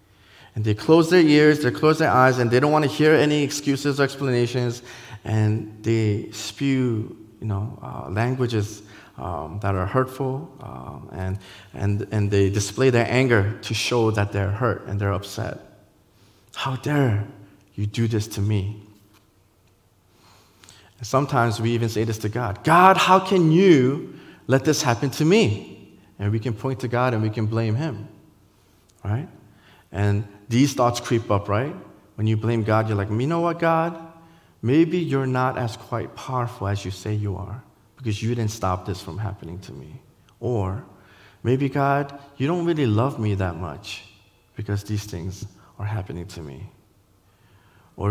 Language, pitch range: English, 100-125 Hz